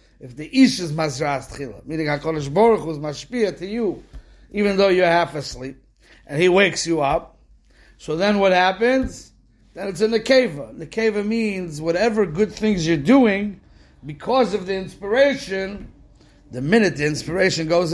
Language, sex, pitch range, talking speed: English, male, 150-190 Hz, 145 wpm